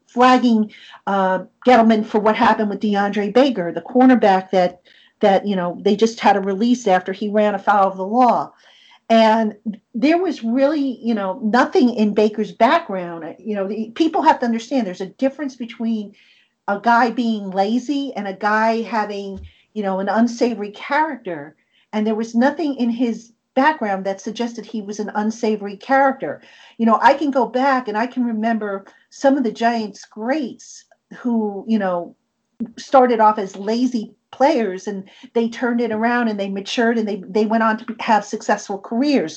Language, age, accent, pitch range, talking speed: English, 50-69, American, 205-245 Hz, 175 wpm